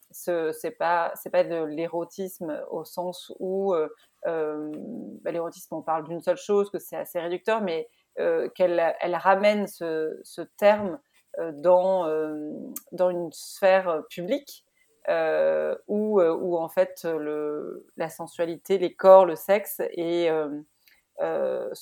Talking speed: 145 wpm